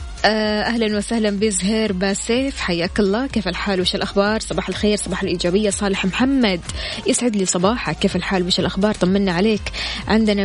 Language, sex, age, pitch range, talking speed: Arabic, female, 20-39, 185-215 Hz, 150 wpm